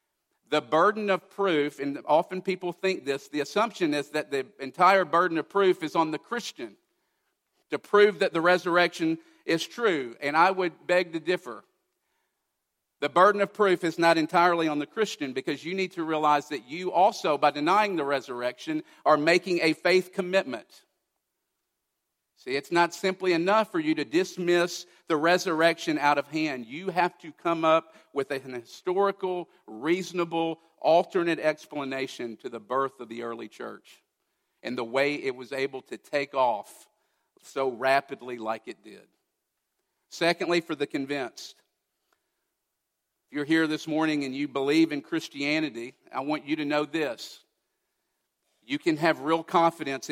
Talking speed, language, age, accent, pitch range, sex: 160 wpm, English, 50-69, American, 145-180 Hz, male